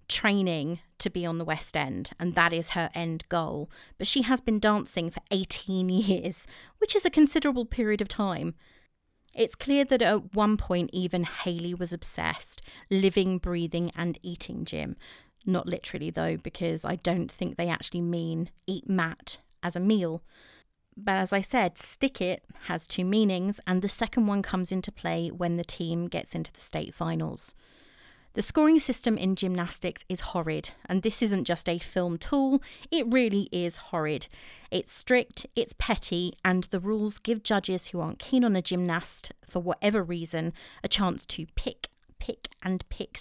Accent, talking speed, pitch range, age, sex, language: British, 175 wpm, 170-210 Hz, 30-49, female, English